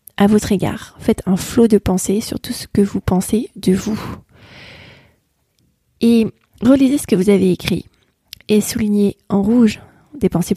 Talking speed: 165 wpm